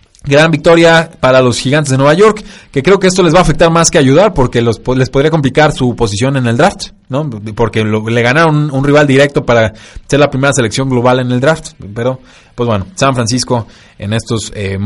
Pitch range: 115-155 Hz